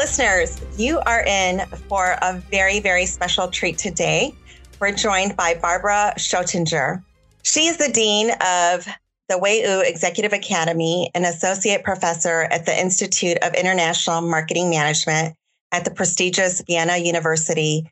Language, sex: English, female